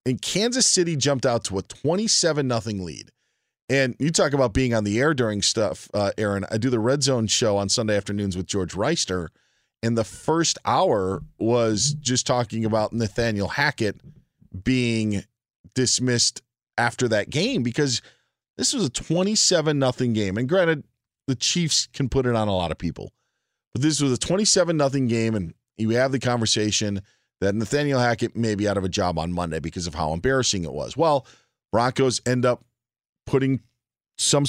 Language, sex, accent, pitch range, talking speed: English, male, American, 110-140 Hz, 180 wpm